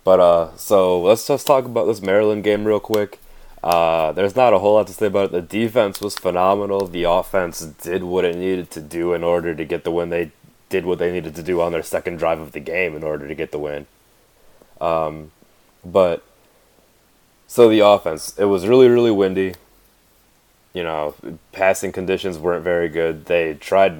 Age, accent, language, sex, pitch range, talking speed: 20-39, American, English, male, 85-100 Hz, 200 wpm